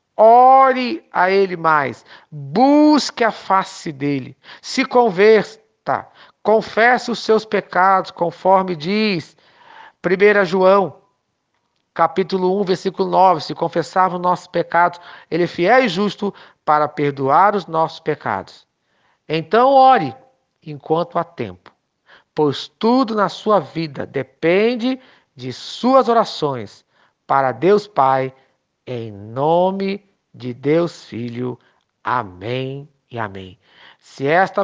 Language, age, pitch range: Portuguese, 50-69, 140-200 Hz